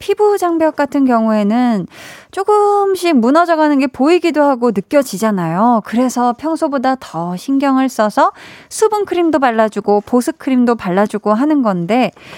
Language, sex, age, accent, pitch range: Korean, female, 20-39, native, 215-310 Hz